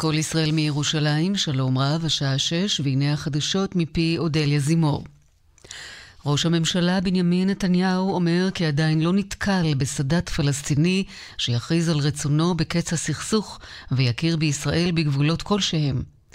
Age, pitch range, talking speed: 40-59, 145-180 Hz, 115 wpm